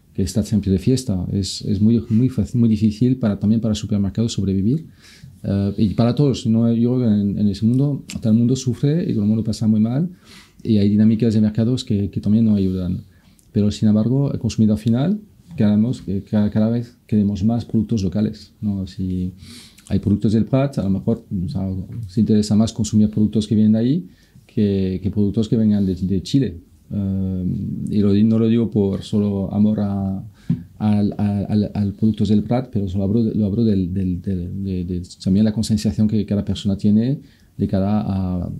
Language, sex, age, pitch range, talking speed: Spanish, male, 40-59, 100-115 Hz, 190 wpm